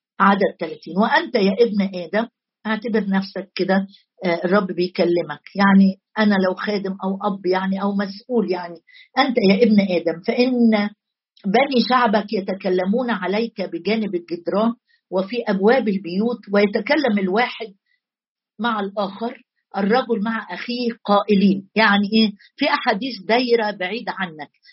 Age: 50-69